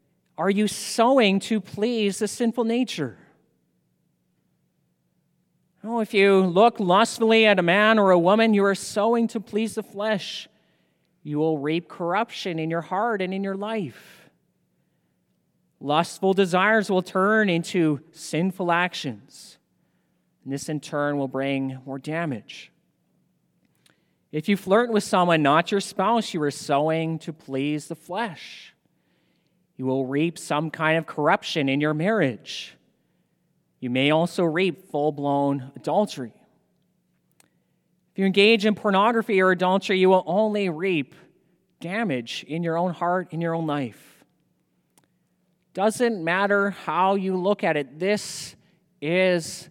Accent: American